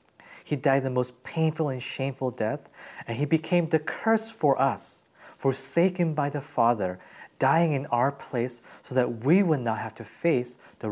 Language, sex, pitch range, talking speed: English, male, 120-160 Hz, 175 wpm